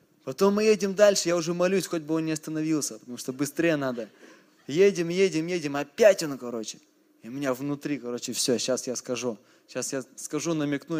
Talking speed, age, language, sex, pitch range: 190 wpm, 20-39, Russian, male, 130-170 Hz